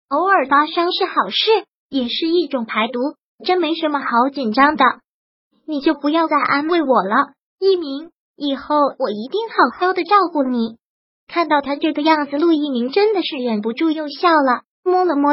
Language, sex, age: Chinese, male, 20-39